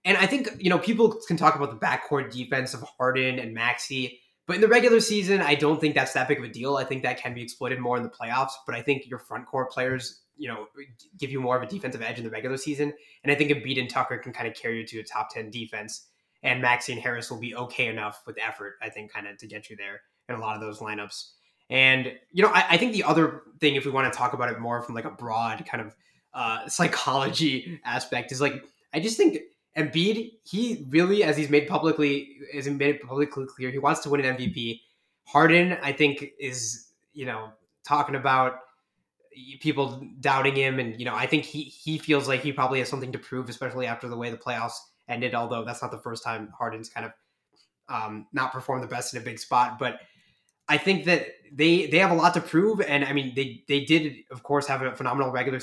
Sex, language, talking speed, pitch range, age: male, English, 240 wpm, 120-150 Hz, 20-39